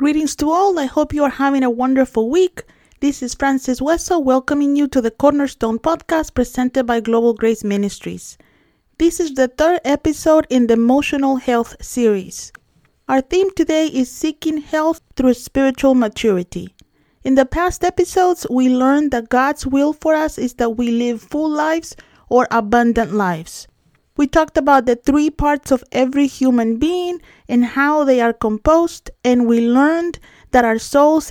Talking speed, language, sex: 165 wpm, English, female